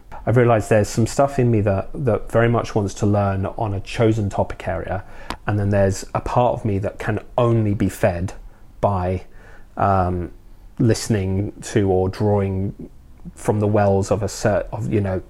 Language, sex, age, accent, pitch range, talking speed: English, male, 30-49, British, 95-115 Hz, 175 wpm